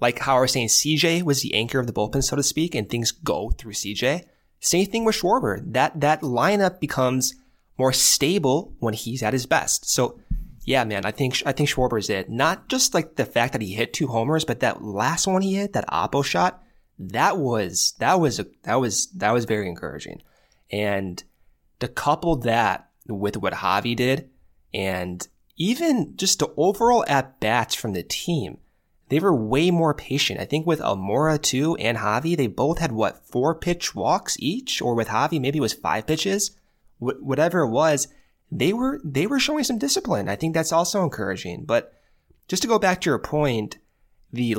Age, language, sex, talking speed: 20-39, English, male, 195 wpm